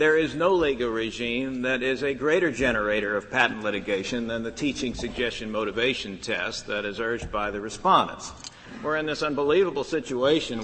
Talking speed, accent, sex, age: 170 wpm, American, male, 60-79